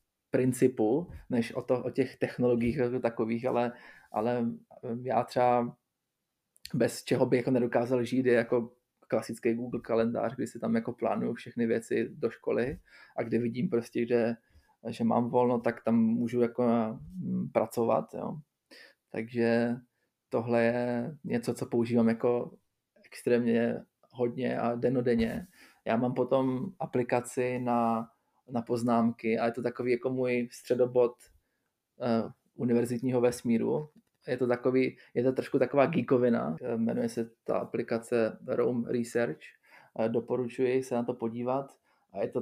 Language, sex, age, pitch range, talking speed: Czech, male, 20-39, 115-125 Hz, 135 wpm